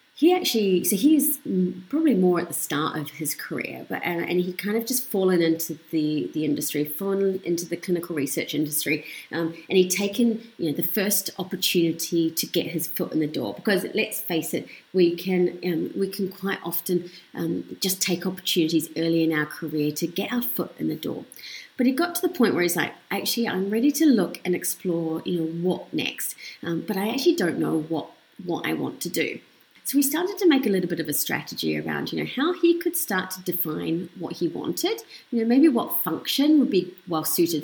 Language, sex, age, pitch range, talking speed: English, female, 30-49, 165-225 Hz, 215 wpm